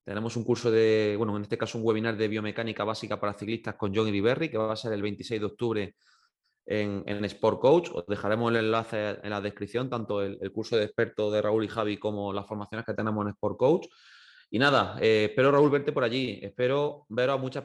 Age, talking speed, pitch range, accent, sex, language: 20-39, 230 wpm, 105-120 Hz, Spanish, male, Spanish